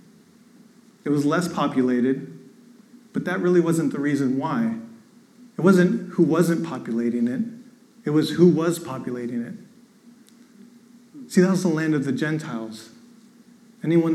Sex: male